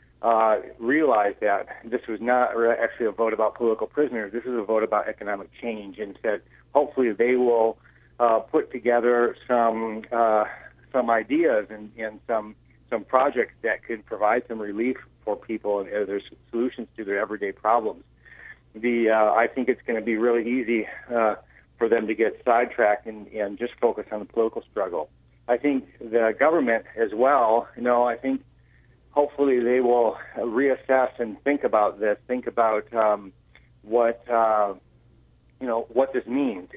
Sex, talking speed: male, 170 wpm